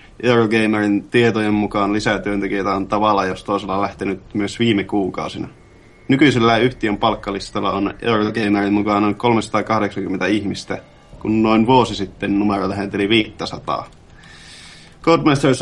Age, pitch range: 20-39, 100-115 Hz